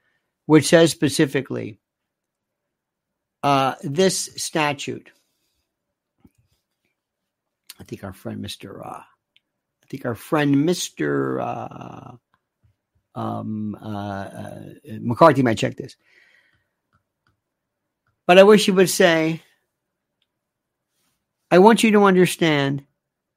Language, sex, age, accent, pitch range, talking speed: English, male, 60-79, American, 140-200 Hz, 90 wpm